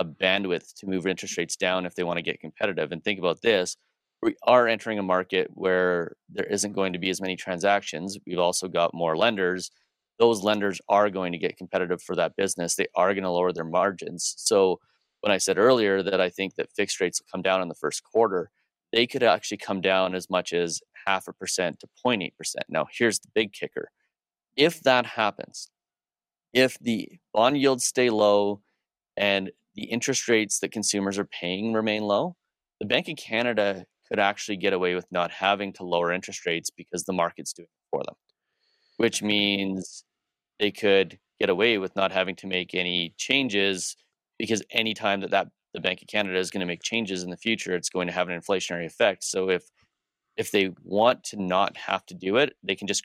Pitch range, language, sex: 90-105 Hz, English, male